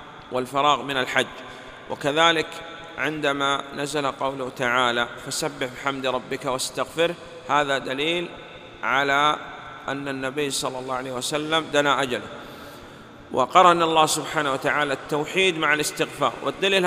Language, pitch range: Arabic, 130-155 Hz